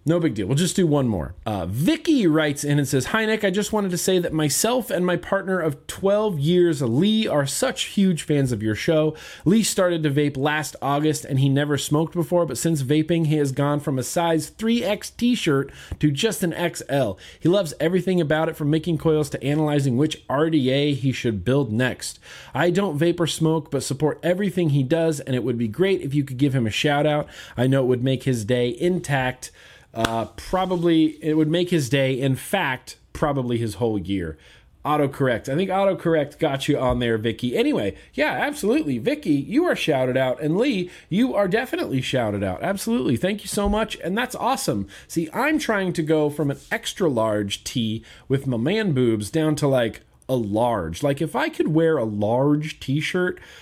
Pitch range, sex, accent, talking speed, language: 130-180 Hz, male, American, 205 wpm, English